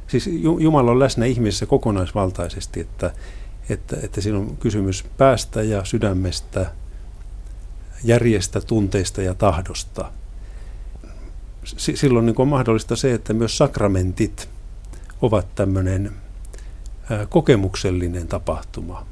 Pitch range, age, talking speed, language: 90-110 Hz, 60-79, 100 wpm, Finnish